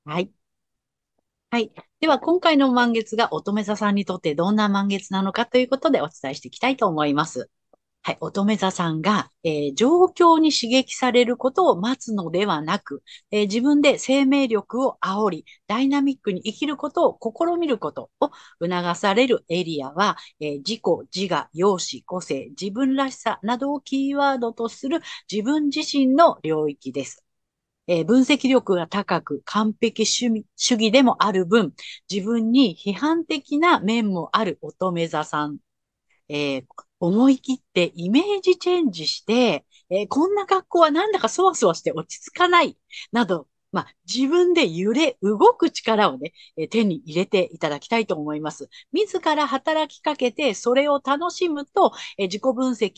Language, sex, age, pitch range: Japanese, female, 50-69, 180-280 Hz